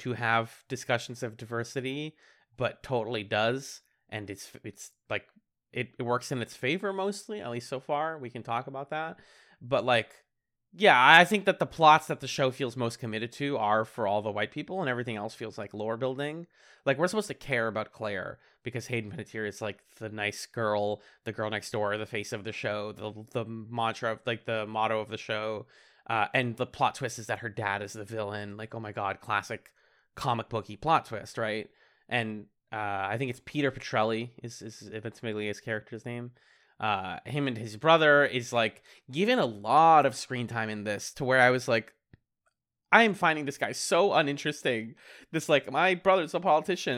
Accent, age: American, 30-49